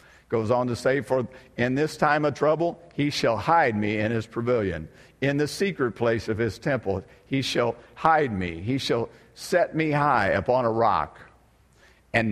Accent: American